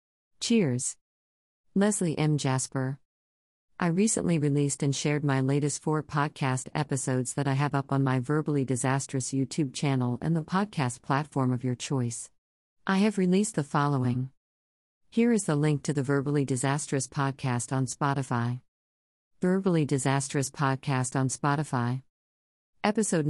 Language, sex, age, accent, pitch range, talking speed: English, female, 50-69, American, 130-160 Hz, 135 wpm